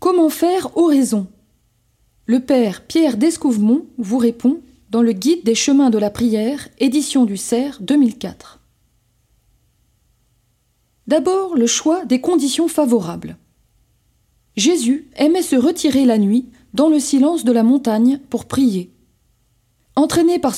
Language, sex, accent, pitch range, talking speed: French, female, French, 220-305 Hz, 130 wpm